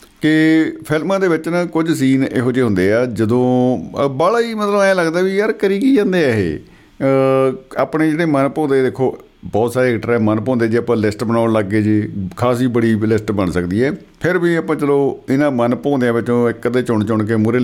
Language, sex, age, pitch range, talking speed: Punjabi, male, 50-69, 105-135 Hz, 195 wpm